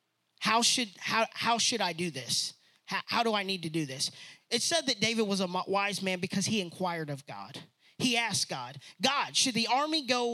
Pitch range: 170-240 Hz